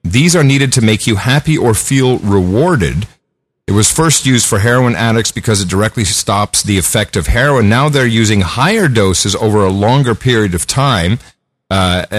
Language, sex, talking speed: English, male, 180 wpm